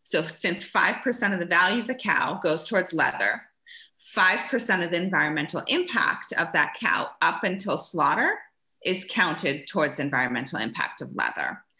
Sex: female